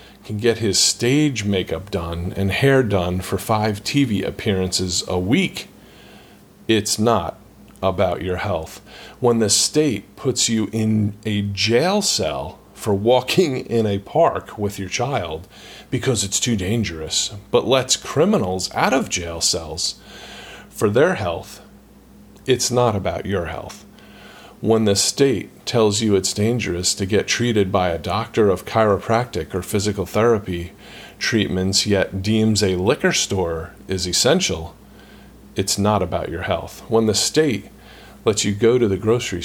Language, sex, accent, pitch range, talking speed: English, male, American, 95-115 Hz, 145 wpm